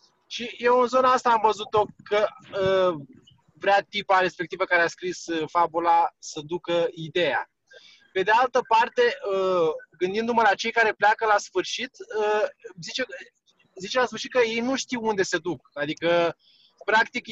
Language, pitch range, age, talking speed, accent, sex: Romanian, 180-230 Hz, 20-39, 160 wpm, native, male